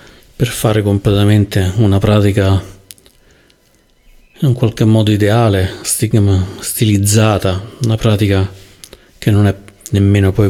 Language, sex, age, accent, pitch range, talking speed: Italian, male, 40-59, native, 100-110 Hz, 95 wpm